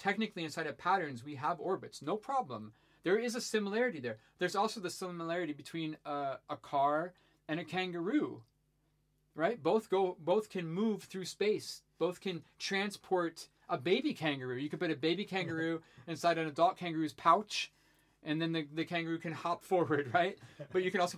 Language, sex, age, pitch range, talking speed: English, male, 40-59, 140-180 Hz, 180 wpm